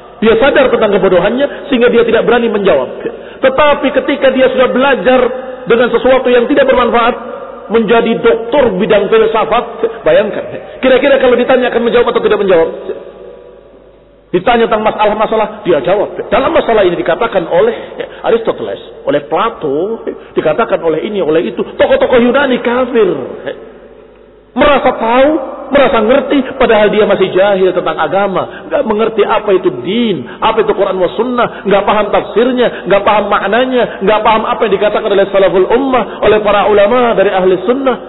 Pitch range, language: 210-275 Hz, Indonesian